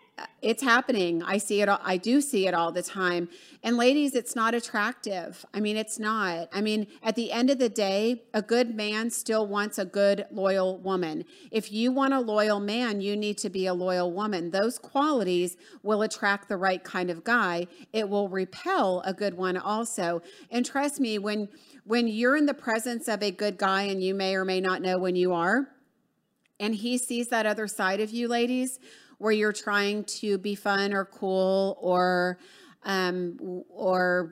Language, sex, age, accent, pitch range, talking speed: English, female, 40-59, American, 195-245 Hz, 190 wpm